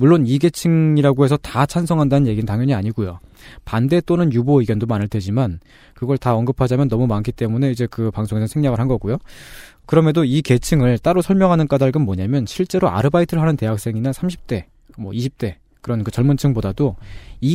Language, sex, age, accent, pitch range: Korean, male, 20-39, native, 110-150 Hz